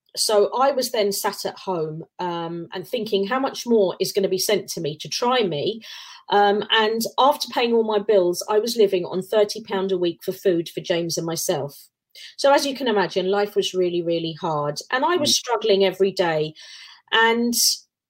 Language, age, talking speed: English, 30-49, 200 wpm